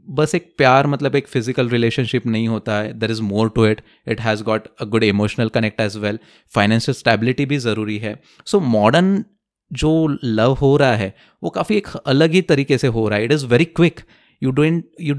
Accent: Indian